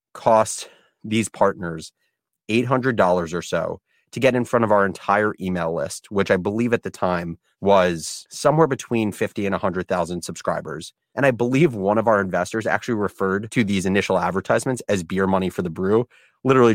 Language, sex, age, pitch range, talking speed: English, male, 30-49, 95-125 Hz, 170 wpm